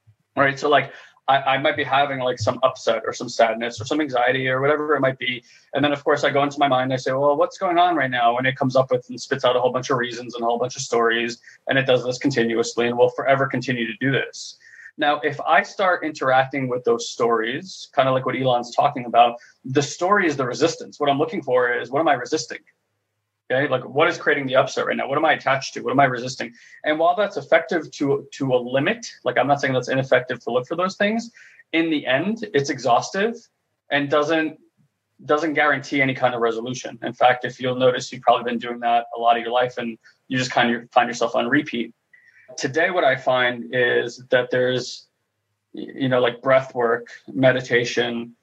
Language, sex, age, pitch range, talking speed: English, male, 20-39, 120-145 Hz, 230 wpm